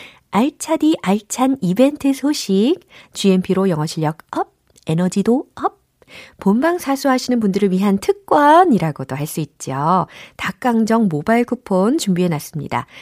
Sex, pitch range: female, 165-255 Hz